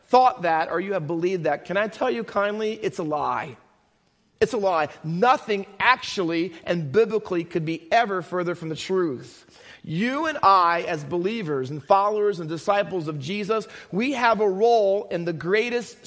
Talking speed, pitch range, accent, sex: 175 wpm, 170-215 Hz, American, male